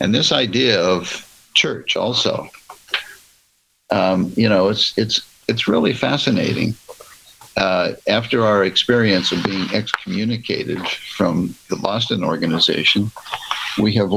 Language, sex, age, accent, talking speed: English, male, 60-79, American, 115 wpm